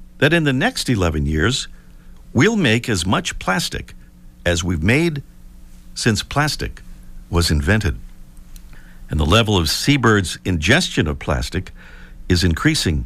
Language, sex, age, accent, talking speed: English, male, 60-79, American, 130 wpm